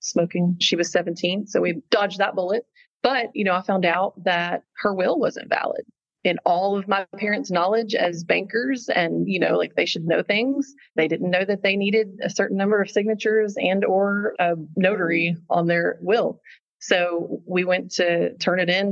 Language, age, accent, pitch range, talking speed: English, 30-49, American, 170-200 Hz, 195 wpm